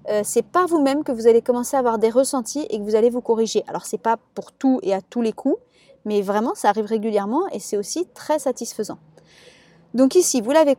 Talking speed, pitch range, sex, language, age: 235 wpm, 220-275 Hz, female, French, 30-49